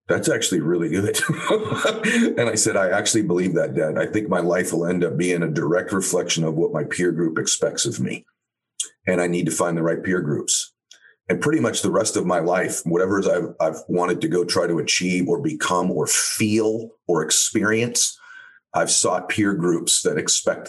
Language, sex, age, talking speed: English, male, 40-59, 205 wpm